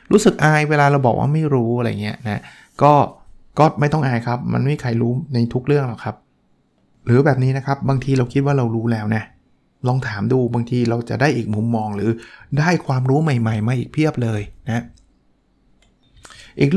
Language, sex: Thai, male